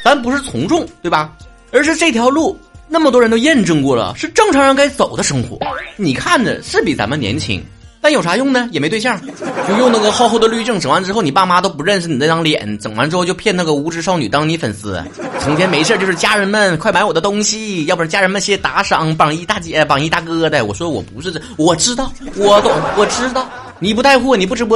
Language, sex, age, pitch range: Chinese, male, 30-49, 170-255 Hz